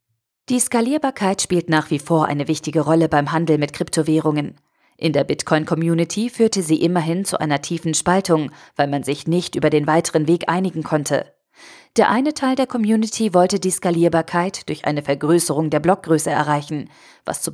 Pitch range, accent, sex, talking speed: 155-190 Hz, German, female, 170 wpm